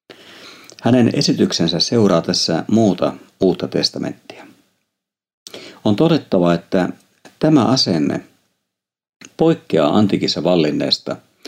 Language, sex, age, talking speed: Finnish, male, 50-69, 75 wpm